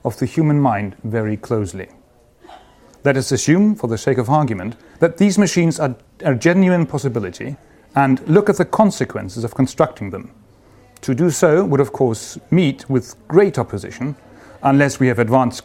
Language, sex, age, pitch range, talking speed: English, male, 40-59, 115-160 Hz, 165 wpm